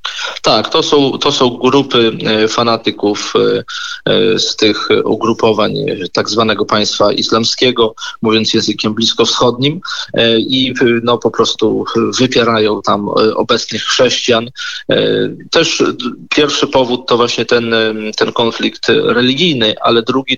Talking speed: 105 wpm